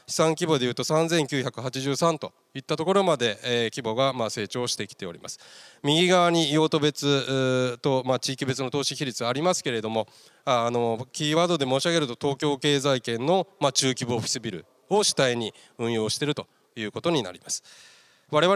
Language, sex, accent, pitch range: Japanese, male, native, 125-170 Hz